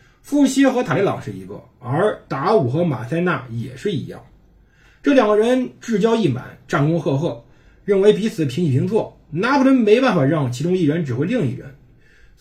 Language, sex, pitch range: Chinese, male, 130-175 Hz